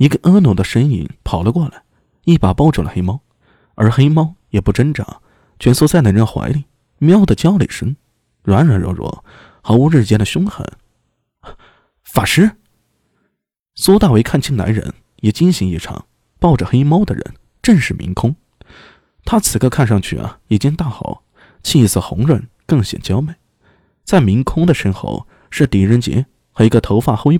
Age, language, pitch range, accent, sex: 20-39, Chinese, 105-150 Hz, native, male